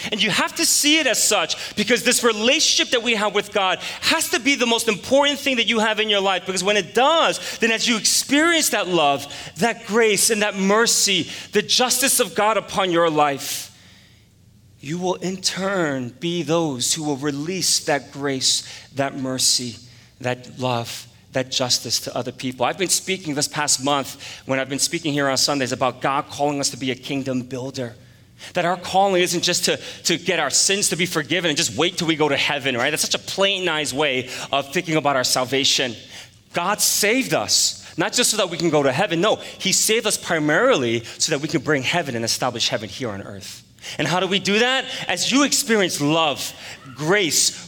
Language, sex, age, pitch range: English, male, 30-49, 130-200 Hz